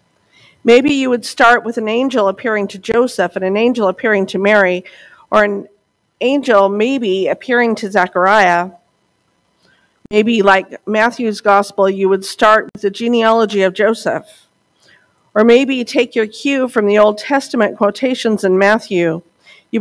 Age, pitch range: 50-69, 195-240 Hz